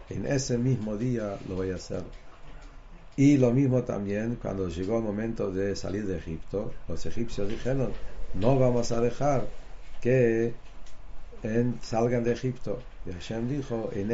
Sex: male